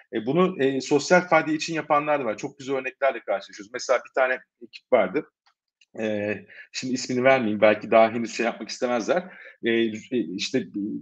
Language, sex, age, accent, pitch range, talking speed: Turkish, male, 50-69, native, 110-145 Hz, 160 wpm